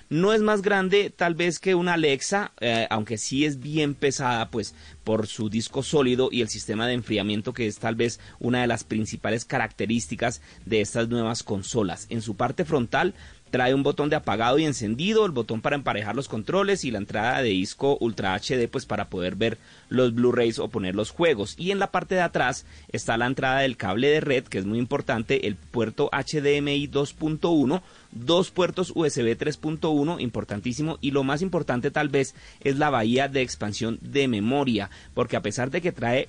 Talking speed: 195 wpm